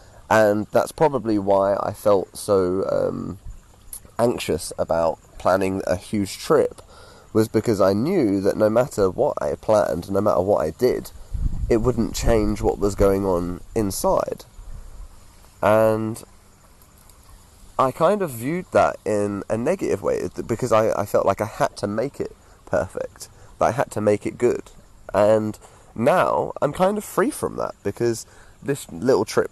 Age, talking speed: 20-39, 155 wpm